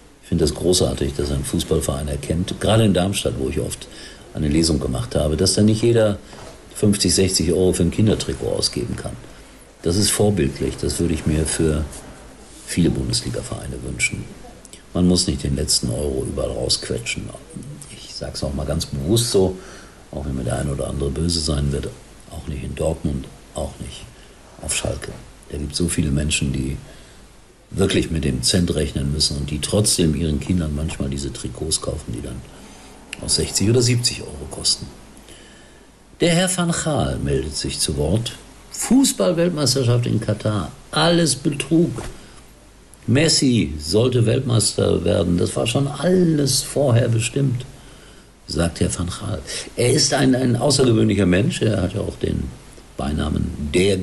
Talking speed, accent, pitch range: 160 wpm, German, 75-115 Hz